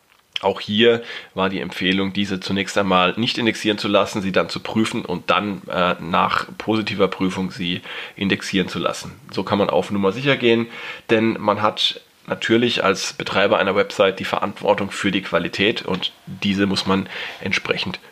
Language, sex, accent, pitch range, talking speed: German, male, German, 100-120 Hz, 170 wpm